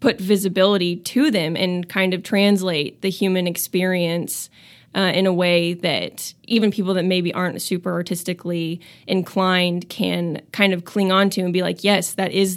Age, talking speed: 20-39, 170 wpm